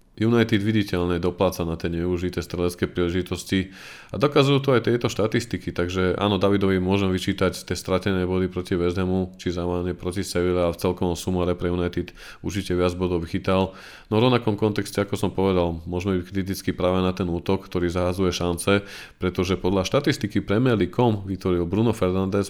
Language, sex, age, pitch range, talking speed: Slovak, male, 20-39, 90-100 Hz, 165 wpm